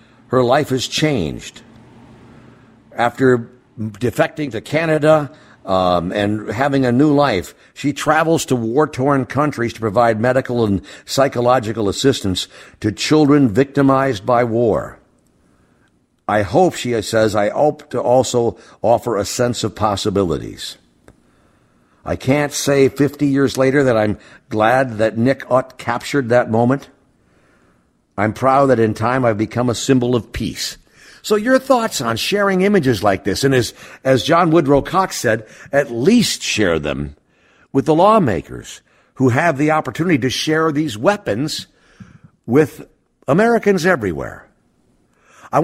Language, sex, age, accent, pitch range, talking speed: English, male, 60-79, American, 110-150 Hz, 135 wpm